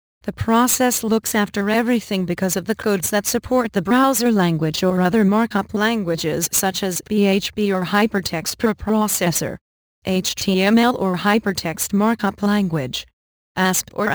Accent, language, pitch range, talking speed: American, English, 175-215 Hz, 135 wpm